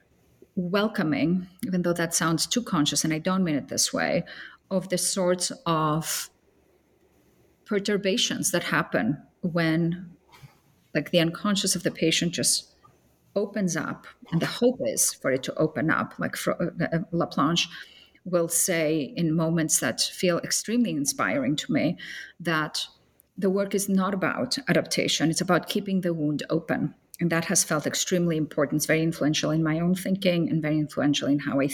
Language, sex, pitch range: English, female, 160-190 Hz